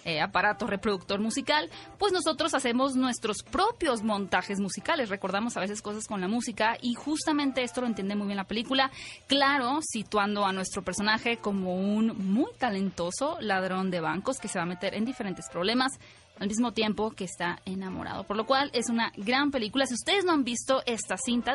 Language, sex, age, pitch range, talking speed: Spanish, female, 20-39, 205-275 Hz, 185 wpm